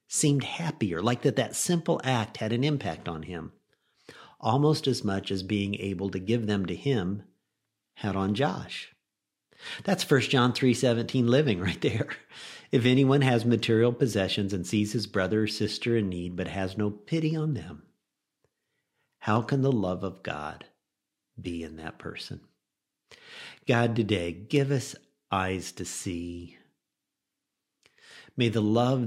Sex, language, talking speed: male, English, 150 wpm